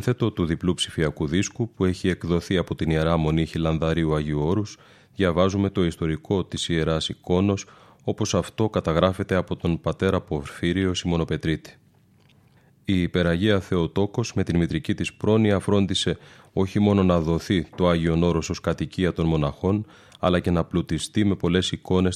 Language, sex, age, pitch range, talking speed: Greek, male, 30-49, 85-95 Hz, 150 wpm